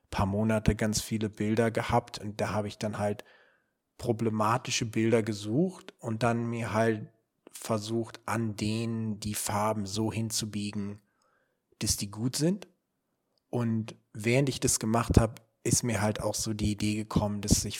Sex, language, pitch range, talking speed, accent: male, German, 105-120 Hz, 155 wpm, German